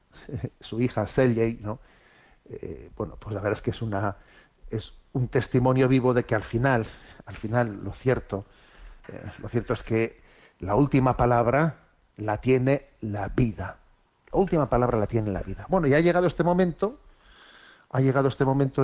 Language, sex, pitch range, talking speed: Spanish, male, 115-135 Hz, 170 wpm